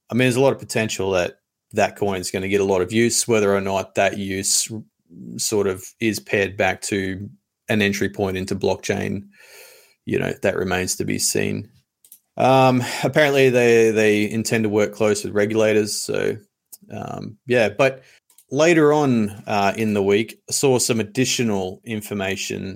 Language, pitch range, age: English, 100-115 Hz, 30-49